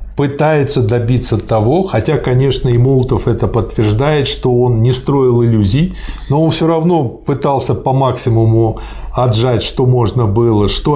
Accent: native